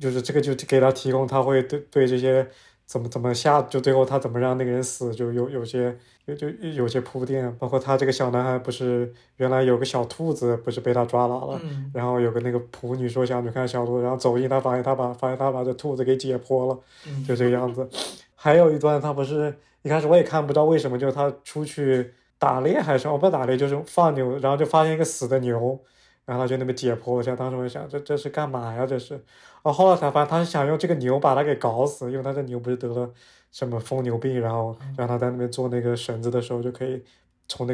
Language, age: Chinese, 20-39